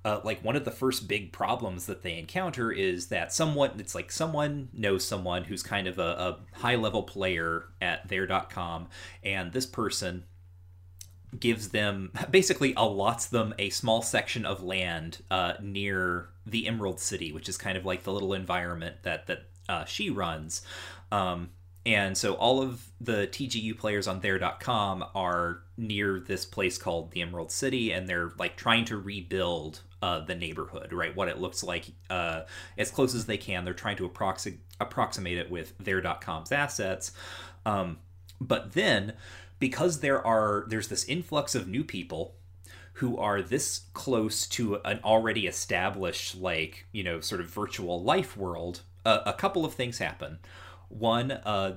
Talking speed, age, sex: 165 wpm, 30-49, male